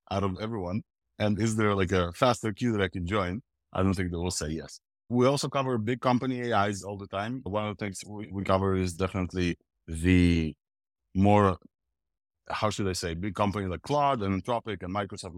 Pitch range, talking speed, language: 90-110 Hz, 205 wpm, English